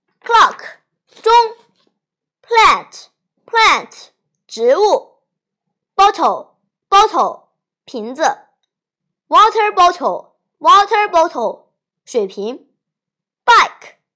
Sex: male